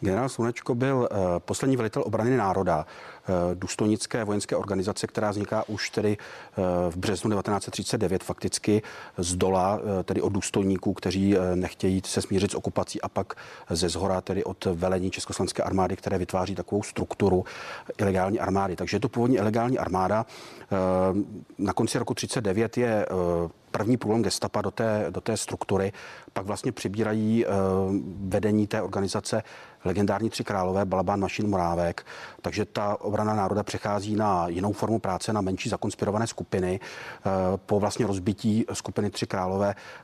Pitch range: 95-105 Hz